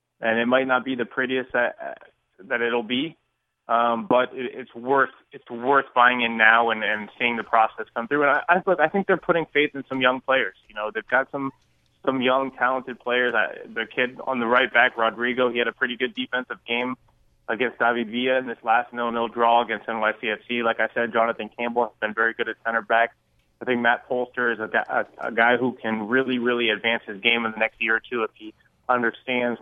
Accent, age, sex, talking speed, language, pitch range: American, 20-39, male, 225 wpm, English, 115-130 Hz